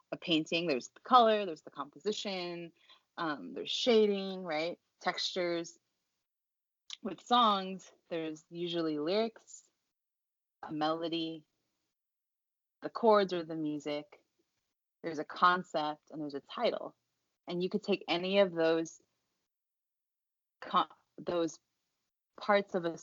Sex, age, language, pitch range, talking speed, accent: female, 30-49, English, 155-190 Hz, 110 wpm, American